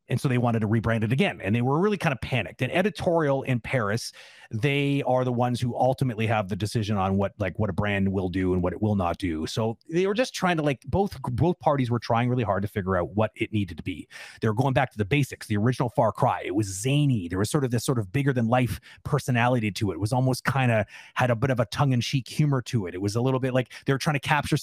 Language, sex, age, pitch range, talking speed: English, male, 30-49, 110-140 Hz, 280 wpm